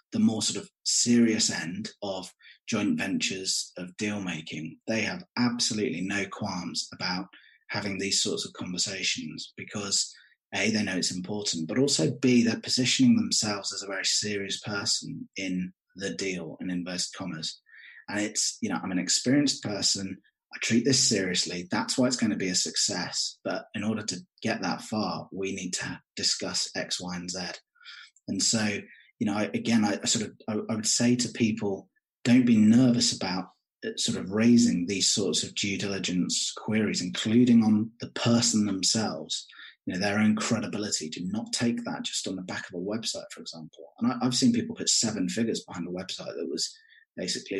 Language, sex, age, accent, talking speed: English, male, 20-39, British, 180 wpm